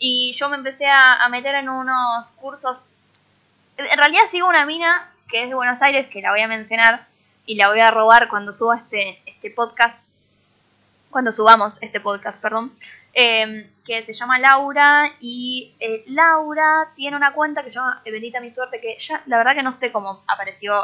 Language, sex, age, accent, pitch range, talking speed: Spanish, female, 10-29, Argentinian, 220-280 Hz, 190 wpm